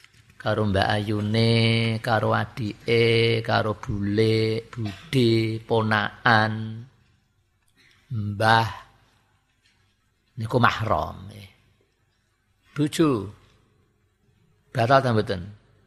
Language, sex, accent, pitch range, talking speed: Indonesian, male, native, 110-130 Hz, 55 wpm